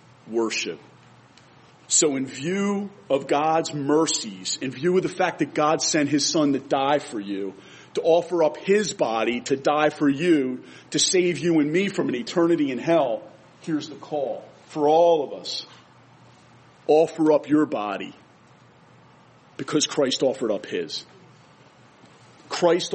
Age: 40-59